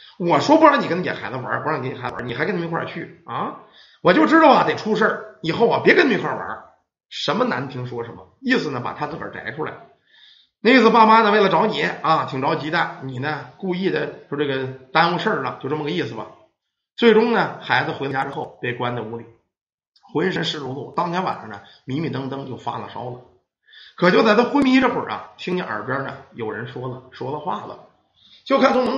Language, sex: Chinese, male